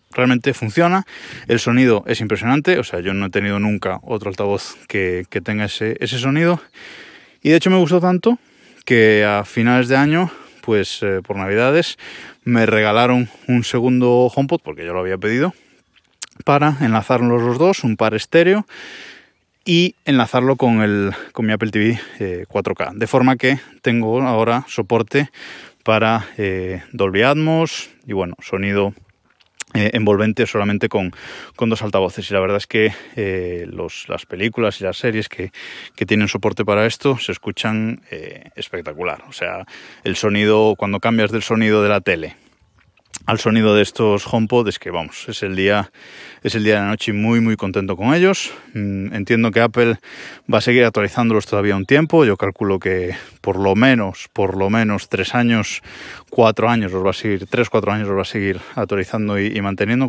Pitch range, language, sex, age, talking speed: 100-125 Hz, Spanish, male, 20-39, 175 wpm